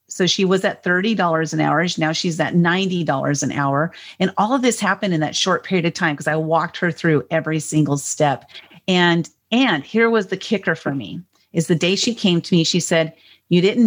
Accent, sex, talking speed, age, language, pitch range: American, female, 220 wpm, 40-59, English, 155-185 Hz